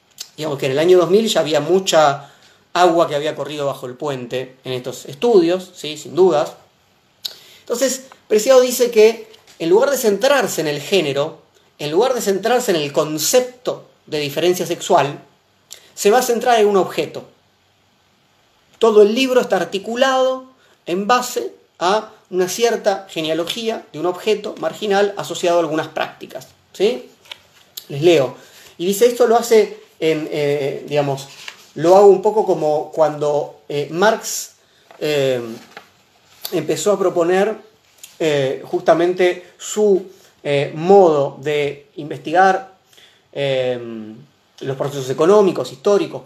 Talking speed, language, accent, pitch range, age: 130 wpm, Spanish, Argentinian, 150-215 Hz, 30-49